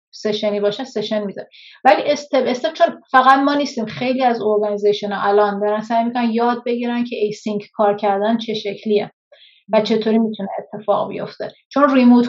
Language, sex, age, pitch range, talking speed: Persian, female, 30-49, 210-255 Hz, 160 wpm